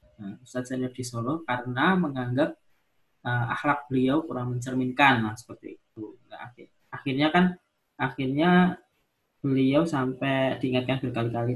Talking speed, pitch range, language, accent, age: 110 wpm, 120-140 Hz, Indonesian, native, 20-39